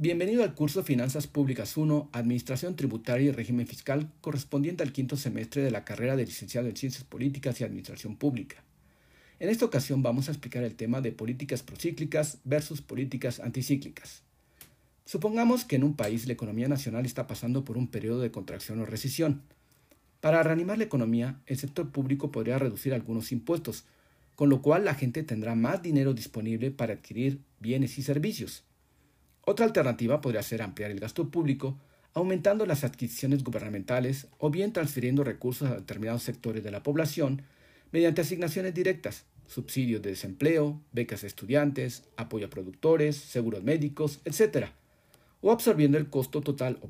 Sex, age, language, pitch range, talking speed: male, 50-69, Spanish, 120-150 Hz, 160 wpm